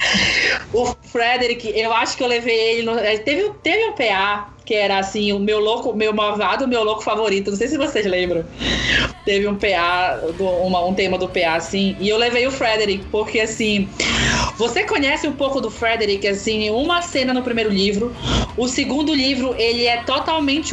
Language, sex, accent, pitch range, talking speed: Portuguese, female, Brazilian, 205-250 Hz, 185 wpm